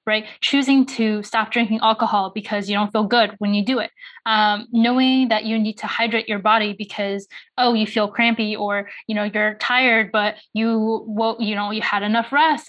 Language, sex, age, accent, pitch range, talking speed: English, female, 10-29, American, 210-245 Hz, 205 wpm